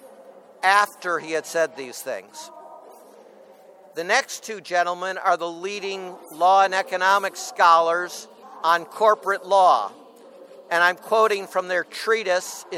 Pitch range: 180-220 Hz